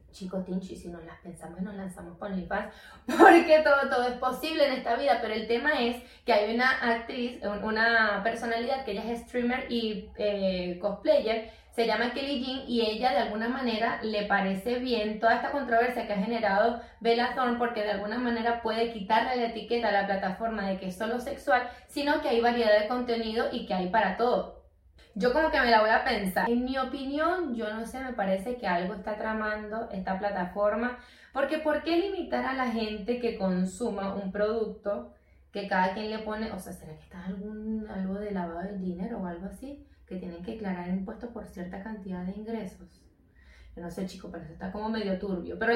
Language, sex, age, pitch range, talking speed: Spanish, female, 20-39, 195-245 Hz, 205 wpm